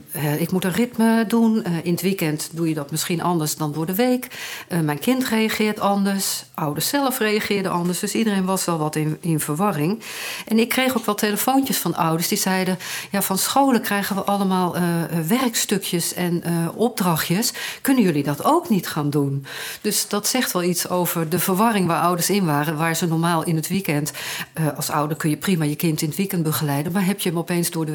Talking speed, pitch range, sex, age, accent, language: 210 wpm, 155-205 Hz, female, 50-69, Dutch, Dutch